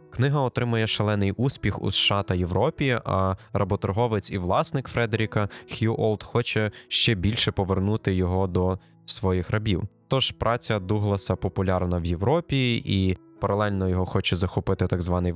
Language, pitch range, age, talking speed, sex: Ukrainian, 95-120 Hz, 20-39, 140 wpm, male